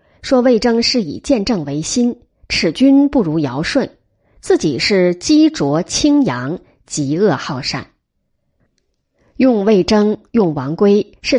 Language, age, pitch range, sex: Chinese, 30-49, 160-255 Hz, female